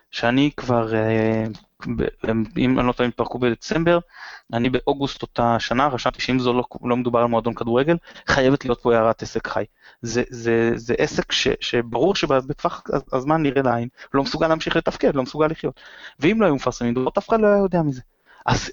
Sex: male